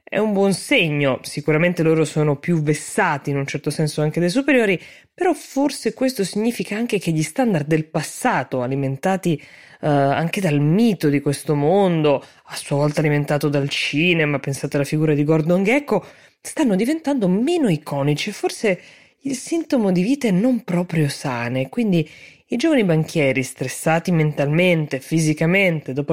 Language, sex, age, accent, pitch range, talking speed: Italian, female, 20-39, native, 145-190 Hz, 150 wpm